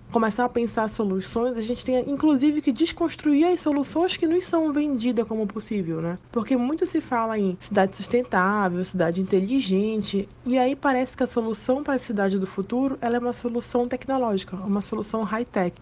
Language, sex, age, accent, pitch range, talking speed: Portuguese, female, 20-39, Brazilian, 200-255 Hz, 175 wpm